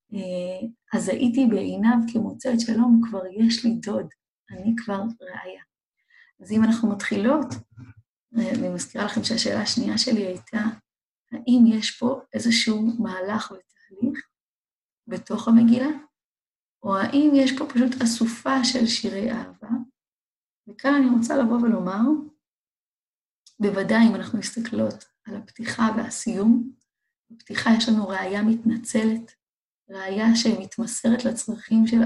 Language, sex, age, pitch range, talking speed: English, female, 20-39, 205-240 Hz, 120 wpm